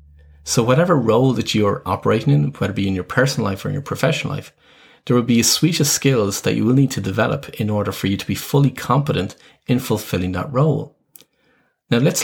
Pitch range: 100-140 Hz